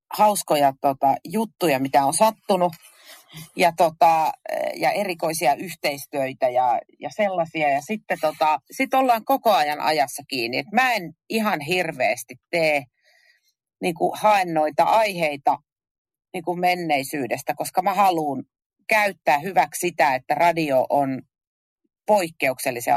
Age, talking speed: 40-59, 115 wpm